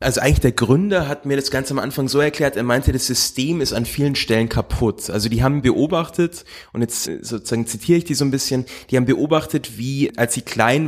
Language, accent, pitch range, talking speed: German, German, 110-130 Hz, 225 wpm